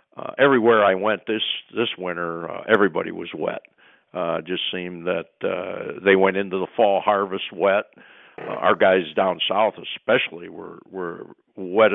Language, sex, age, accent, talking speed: English, male, 60-79, American, 165 wpm